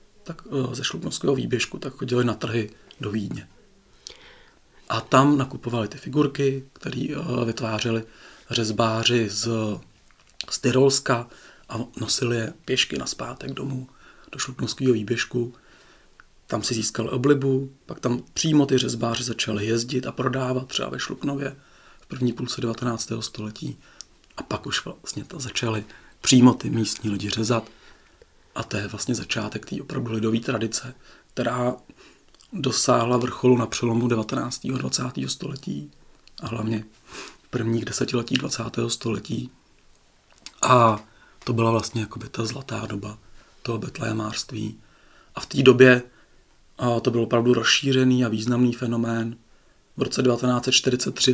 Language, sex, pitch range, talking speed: Czech, male, 115-130 Hz, 130 wpm